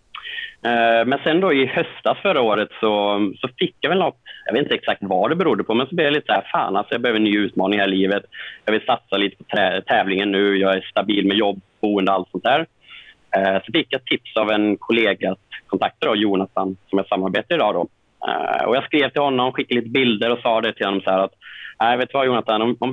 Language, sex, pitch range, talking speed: Swedish, male, 95-120 Hz, 240 wpm